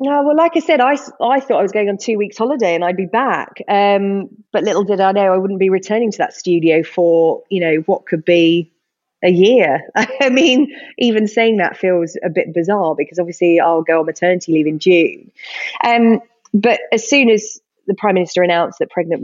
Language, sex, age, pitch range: English, female, 30-49, 160-205 Hz